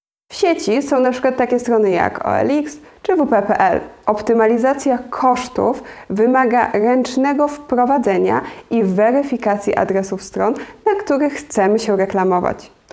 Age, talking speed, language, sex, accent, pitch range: 20-39, 110 wpm, Polish, female, native, 200-275 Hz